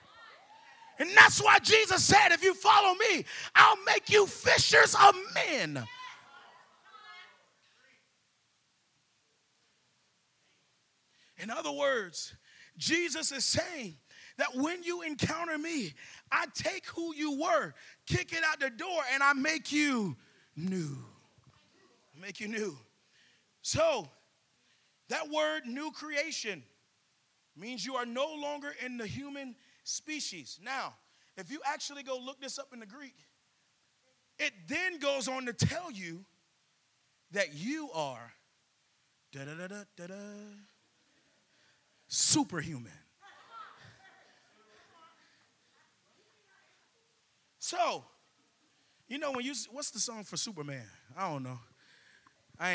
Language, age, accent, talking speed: English, 30-49, American, 115 wpm